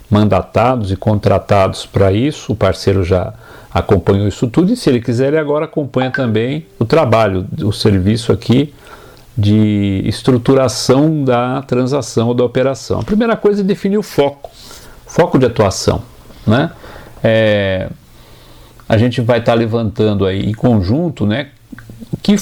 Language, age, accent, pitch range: Portuguese, 50-69, Brazilian, 100-125 Hz